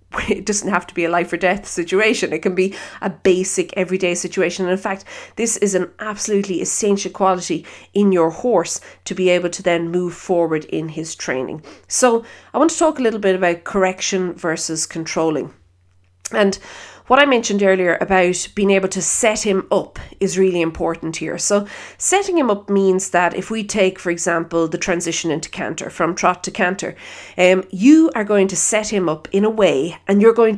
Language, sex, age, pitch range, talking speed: English, female, 40-59, 175-230 Hz, 195 wpm